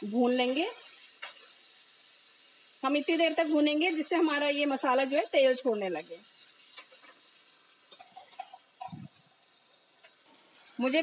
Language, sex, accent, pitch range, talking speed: Hindi, female, native, 250-300 Hz, 90 wpm